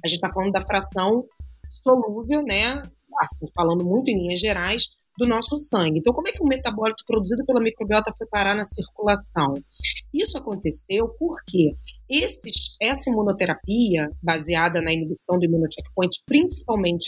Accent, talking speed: Brazilian, 150 wpm